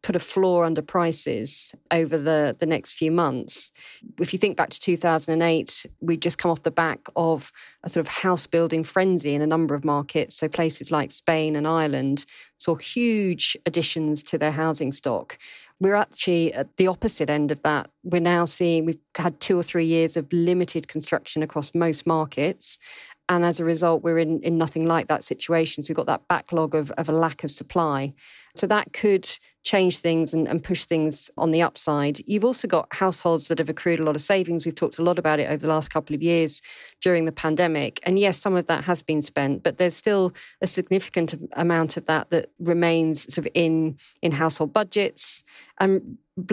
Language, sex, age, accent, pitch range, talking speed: English, female, 40-59, British, 155-180 Hz, 200 wpm